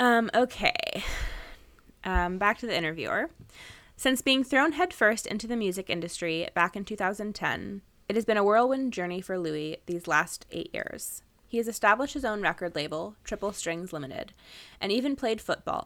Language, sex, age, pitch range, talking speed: English, female, 20-39, 175-230 Hz, 165 wpm